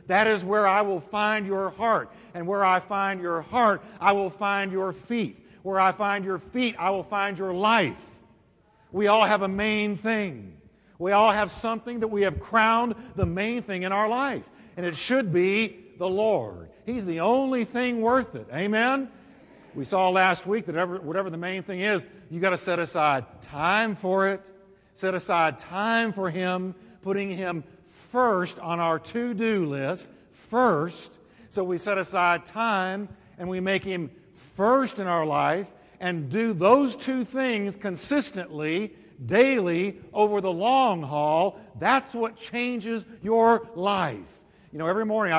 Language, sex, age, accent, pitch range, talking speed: English, male, 50-69, American, 170-215 Hz, 170 wpm